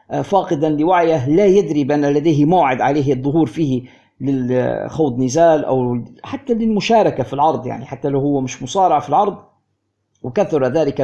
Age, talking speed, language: 50-69, 145 wpm, Arabic